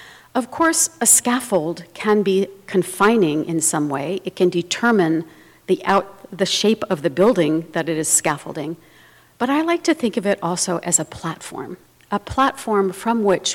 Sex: female